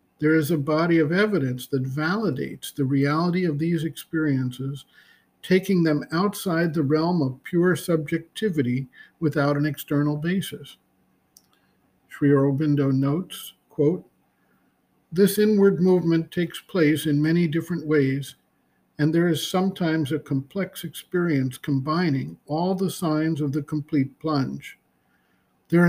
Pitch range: 140-175 Hz